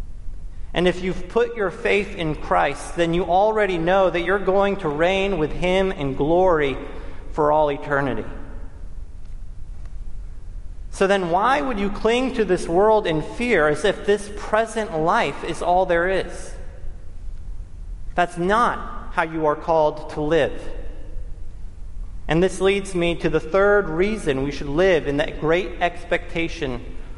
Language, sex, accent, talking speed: English, male, American, 150 wpm